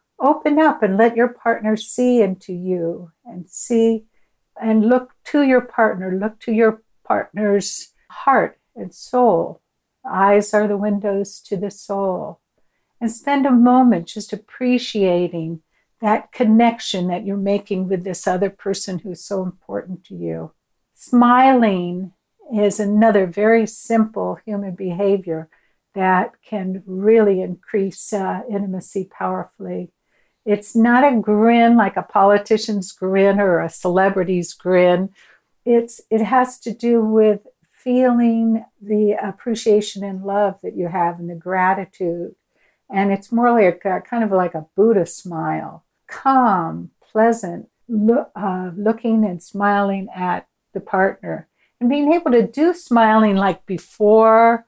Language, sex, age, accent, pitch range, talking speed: English, female, 60-79, American, 185-230 Hz, 135 wpm